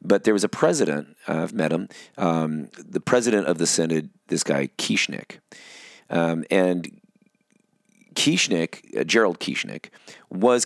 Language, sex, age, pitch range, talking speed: English, male, 30-49, 85-110 Hz, 140 wpm